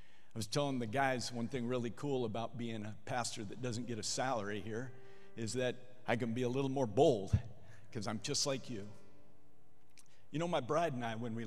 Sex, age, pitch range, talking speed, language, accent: male, 50-69, 110-135 Hz, 215 wpm, English, American